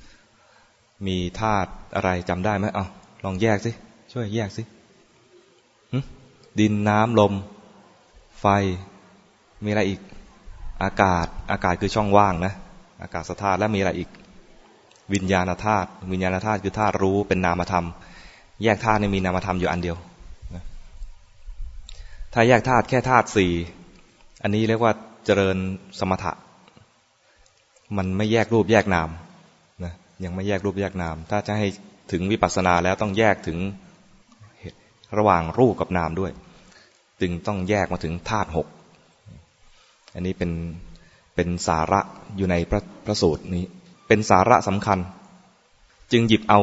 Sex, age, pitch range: male, 20-39, 90-105 Hz